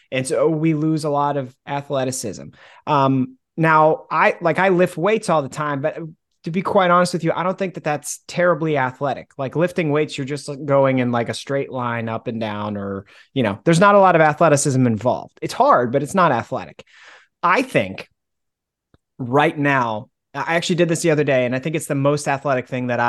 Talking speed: 215 wpm